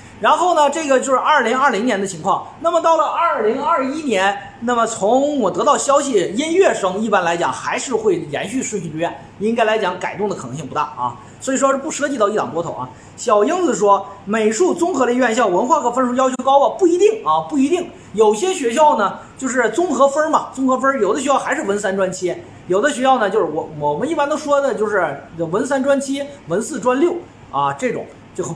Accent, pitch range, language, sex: native, 195-300 Hz, Chinese, male